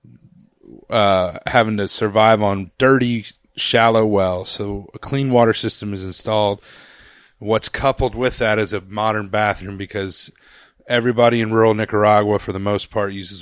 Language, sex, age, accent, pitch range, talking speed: English, male, 30-49, American, 100-115 Hz, 150 wpm